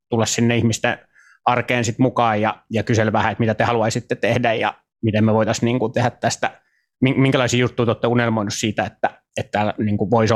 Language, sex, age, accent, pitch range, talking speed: Finnish, male, 20-39, native, 110-125 Hz, 195 wpm